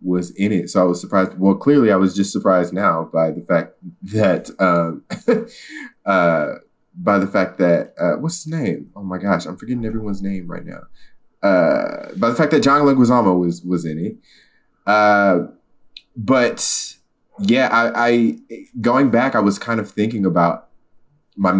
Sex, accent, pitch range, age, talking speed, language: male, American, 85-110 Hz, 20-39, 170 wpm, English